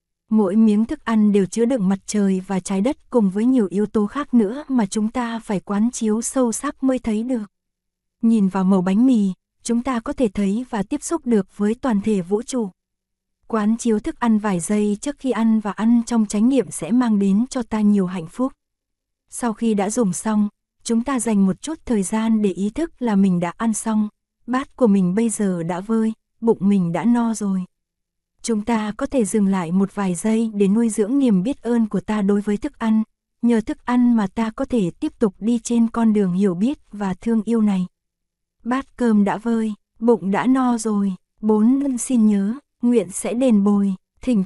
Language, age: Vietnamese, 20-39